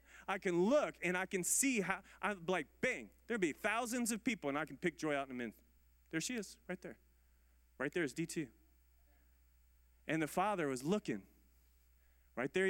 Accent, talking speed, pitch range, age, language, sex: American, 195 wpm, 155-235 Hz, 30-49, English, male